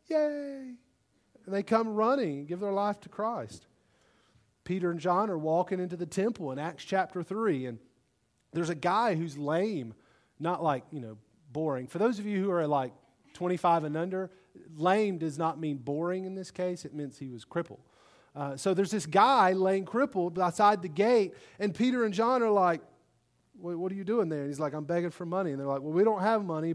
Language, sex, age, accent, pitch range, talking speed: English, male, 30-49, American, 155-215 Hz, 205 wpm